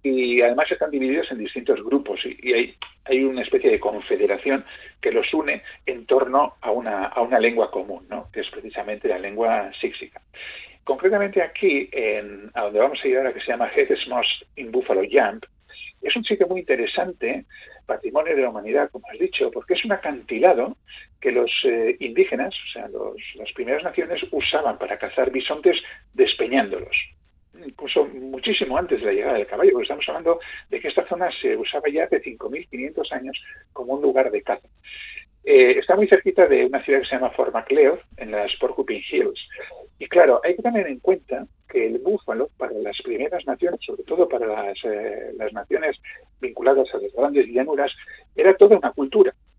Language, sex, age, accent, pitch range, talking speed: Spanish, male, 50-69, Spanish, 345-430 Hz, 175 wpm